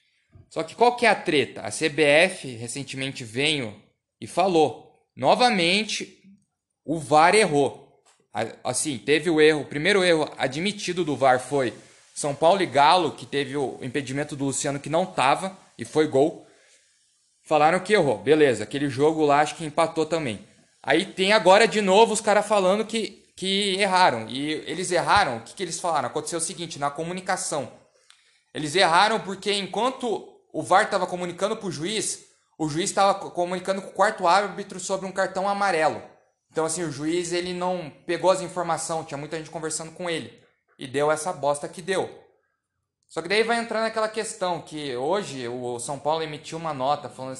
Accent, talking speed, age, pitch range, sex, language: Brazilian, 175 wpm, 20-39, 145-195 Hz, male, Portuguese